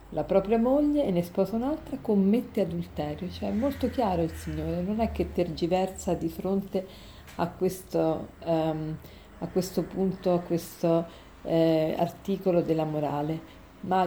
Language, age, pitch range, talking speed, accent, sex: Italian, 50-69, 170-205 Hz, 135 wpm, native, female